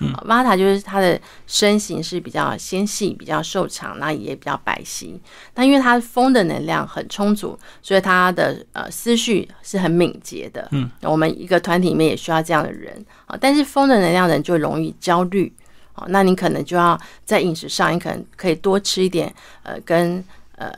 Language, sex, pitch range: Chinese, female, 160-200 Hz